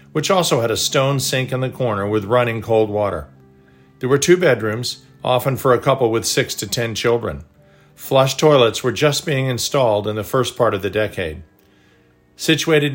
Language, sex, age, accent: English, male, 50-69, American